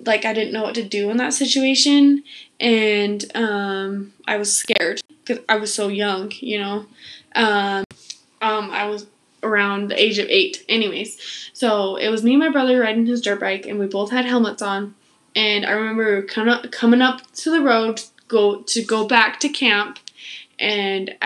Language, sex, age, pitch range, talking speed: English, female, 10-29, 205-240 Hz, 185 wpm